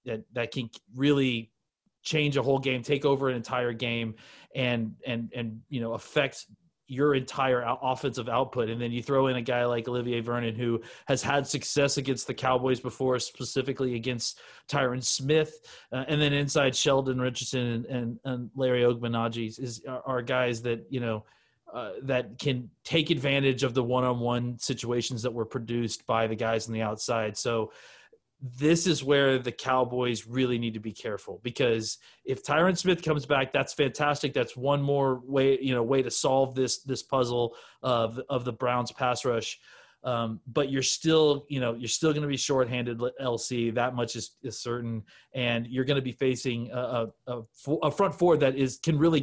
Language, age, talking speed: English, 30-49, 185 wpm